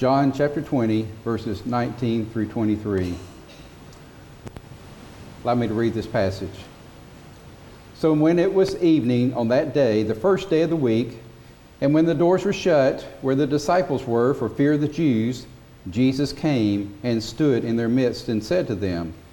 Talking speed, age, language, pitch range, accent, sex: 165 wpm, 50-69, English, 110-150 Hz, American, male